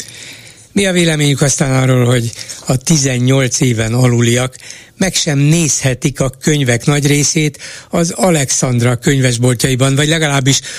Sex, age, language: male, 60-79, Hungarian